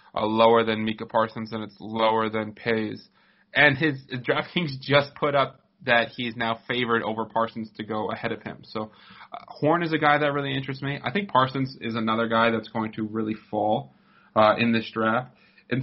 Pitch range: 110-130 Hz